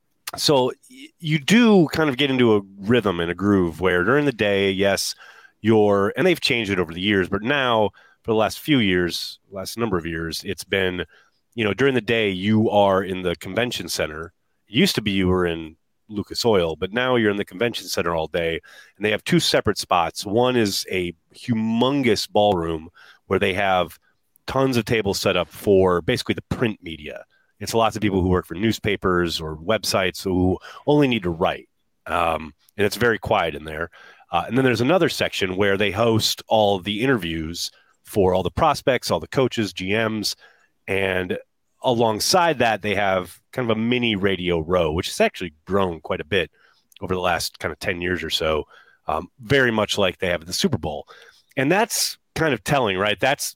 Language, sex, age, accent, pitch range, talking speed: English, male, 30-49, American, 90-115 Hz, 200 wpm